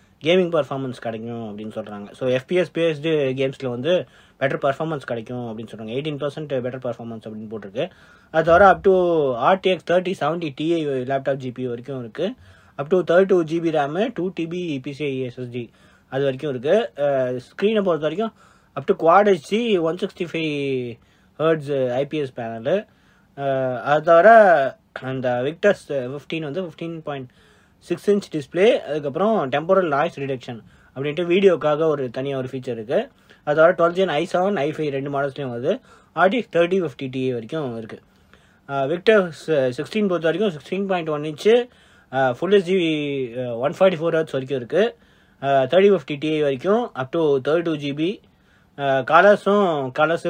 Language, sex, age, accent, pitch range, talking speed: English, male, 20-39, Indian, 130-175 Hz, 80 wpm